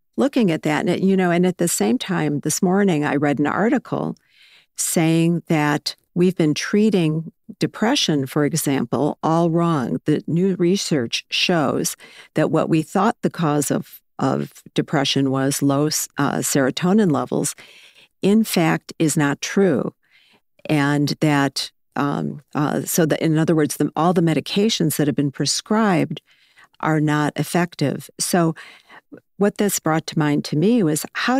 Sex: female